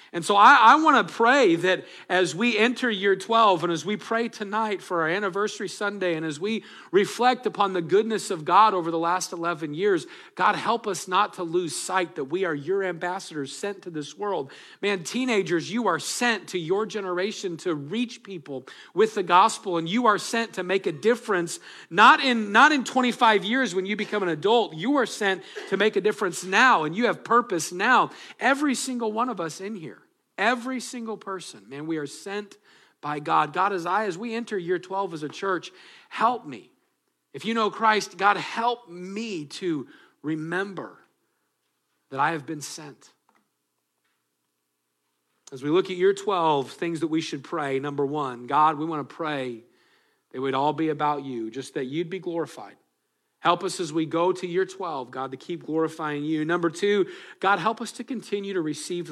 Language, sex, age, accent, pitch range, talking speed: English, male, 40-59, American, 160-215 Hz, 190 wpm